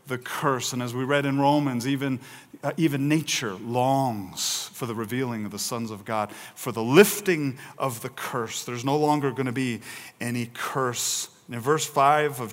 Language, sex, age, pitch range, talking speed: English, male, 40-59, 120-145 Hz, 190 wpm